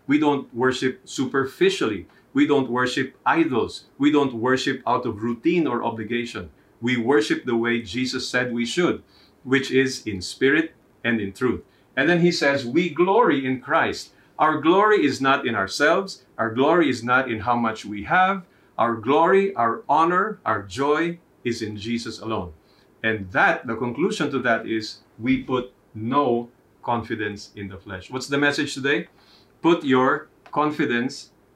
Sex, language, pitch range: male, English, 110-145 Hz